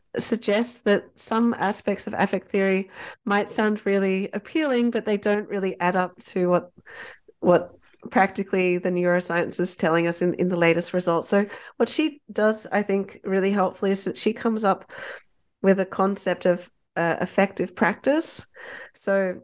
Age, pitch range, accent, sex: 30-49, 180-215 Hz, Australian, female